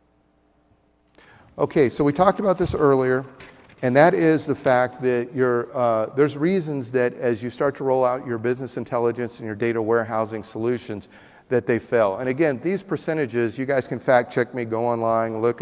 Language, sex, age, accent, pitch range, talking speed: English, male, 40-59, American, 115-150 Hz, 175 wpm